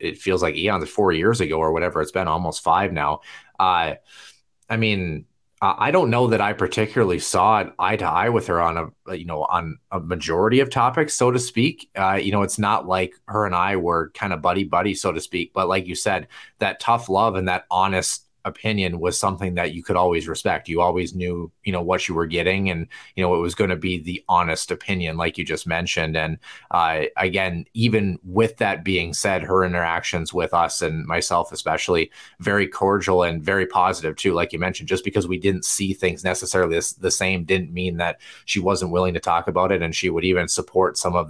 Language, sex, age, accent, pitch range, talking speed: English, male, 30-49, American, 85-100 Hz, 220 wpm